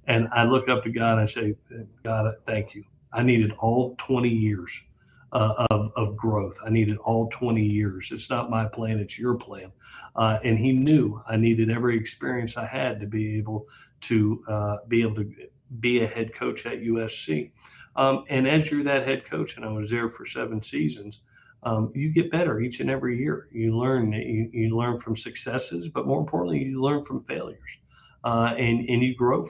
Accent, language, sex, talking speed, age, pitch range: American, English, male, 200 wpm, 40-59, 110-120 Hz